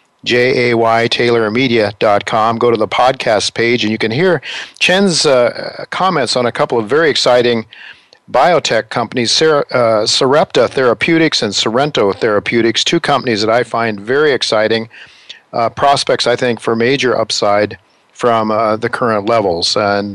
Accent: American